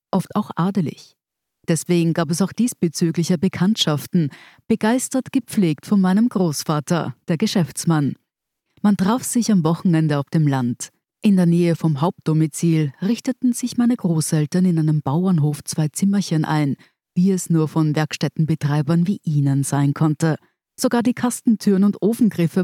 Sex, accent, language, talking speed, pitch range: female, German, German, 140 wpm, 155-195 Hz